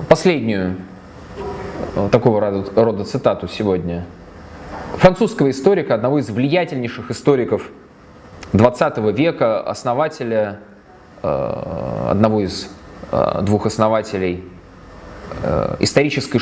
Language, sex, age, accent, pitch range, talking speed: Russian, male, 20-39, native, 105-150 Hz, 70 wpm